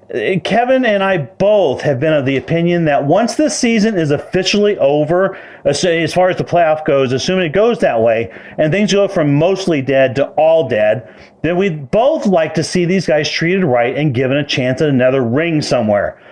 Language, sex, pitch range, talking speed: English, male, 155-215 Hz, 200 wpm